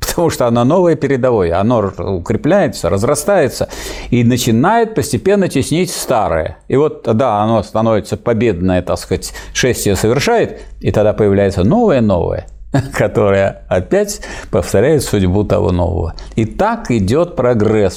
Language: Russian